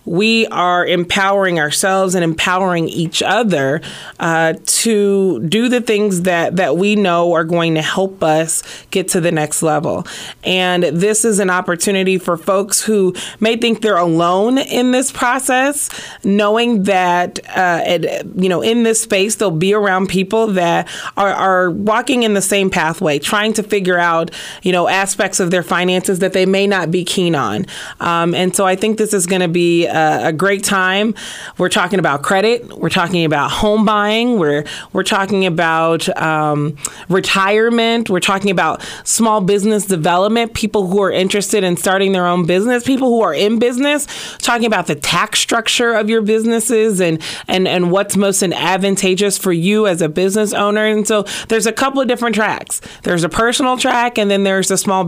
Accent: American